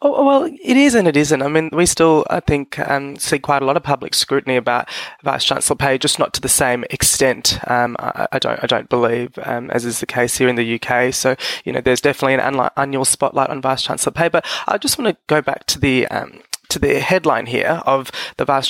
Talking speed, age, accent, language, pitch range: 245 wpm, 20-39, Australian, English, 130-170 Hz